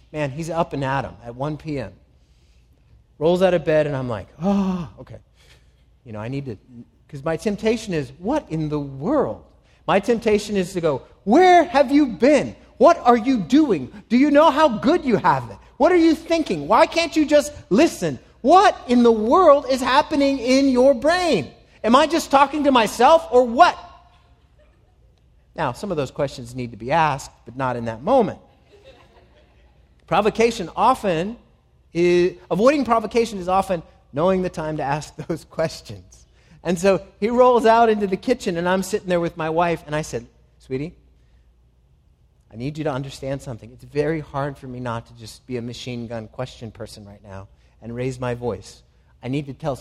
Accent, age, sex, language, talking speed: American, 30-49, male, English, 185 wpm